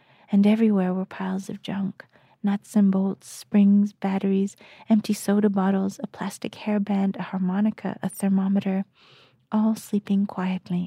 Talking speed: 130 wpm